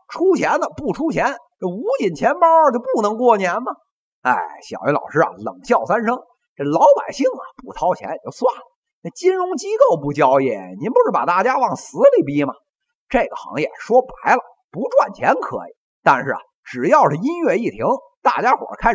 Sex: male